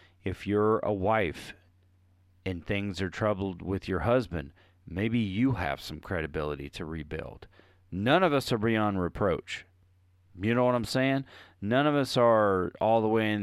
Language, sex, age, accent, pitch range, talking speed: English, male, 40-59, American, 90-110 Hz, 165 wpm